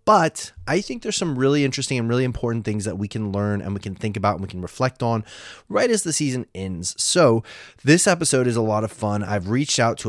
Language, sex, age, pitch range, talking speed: English, male, 20-39, 100-125 Hz, 250 wpm